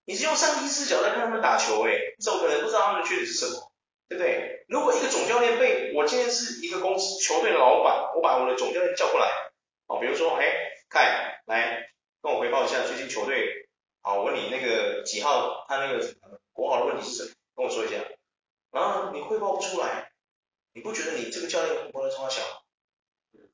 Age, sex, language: 30-49, male, Chinese